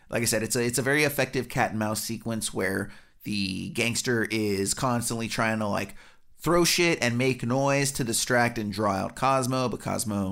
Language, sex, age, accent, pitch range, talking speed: English, male, 30-49, American, 110-135 Hz, 200 wpm